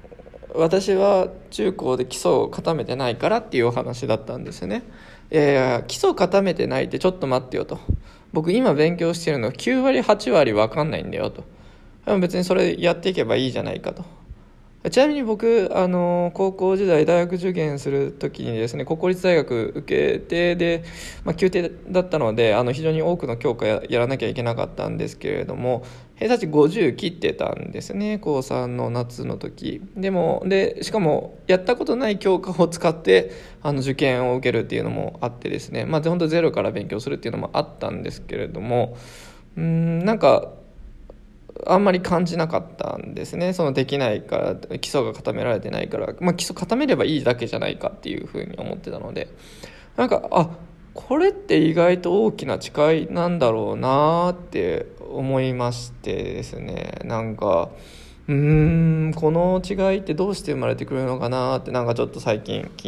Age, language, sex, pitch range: 20-39, Japanese, male, 135-185 Hz